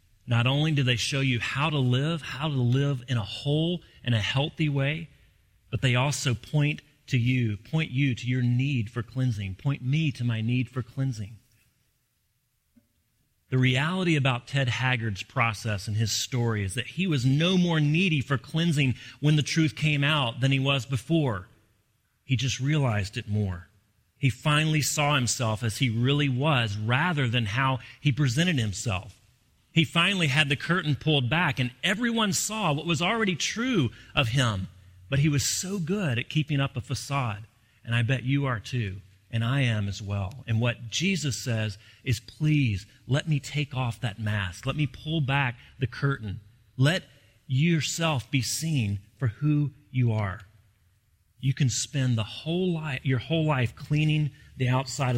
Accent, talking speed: American, 175 wpm